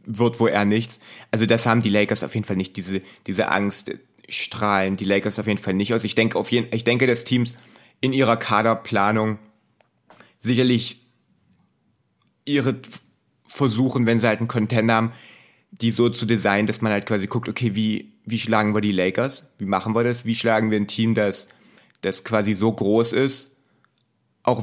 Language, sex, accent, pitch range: German, male, German, 105-120 Hz